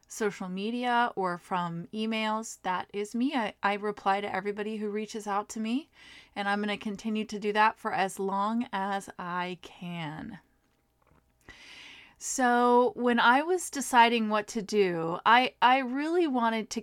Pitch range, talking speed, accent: 185-230 Hz, 160 wpm, American